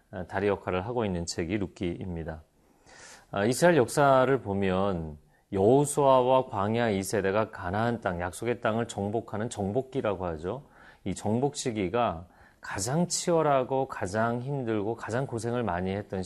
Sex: male